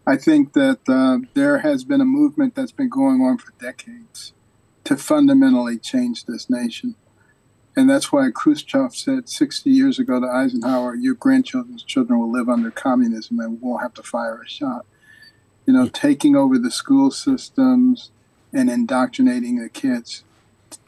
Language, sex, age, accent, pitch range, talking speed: English, male, 50-69, American, 245-285 Hz, 165 wpm